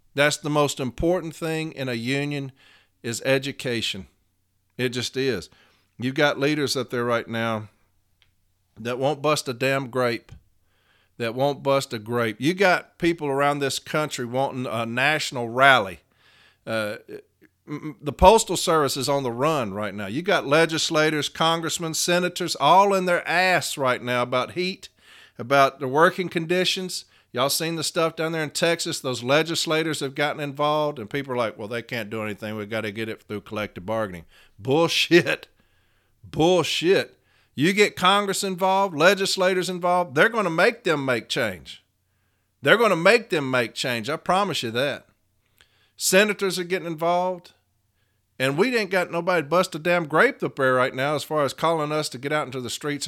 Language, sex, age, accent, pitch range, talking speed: English, male, 50-69, American, 115-165 Hz, 175 wpm